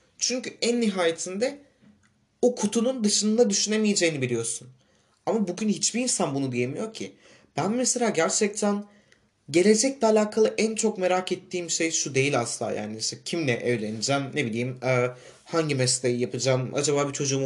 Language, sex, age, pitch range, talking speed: Turkish, male, 30-49, 130-190 Hz, 140 wpm